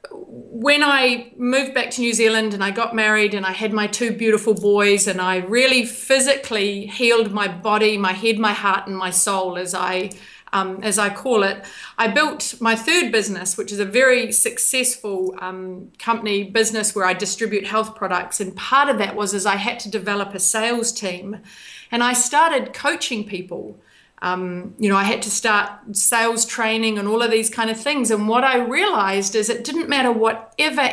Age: 30-49